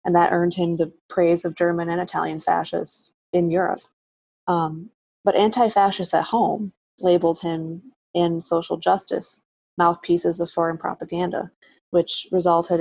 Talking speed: 135 wpm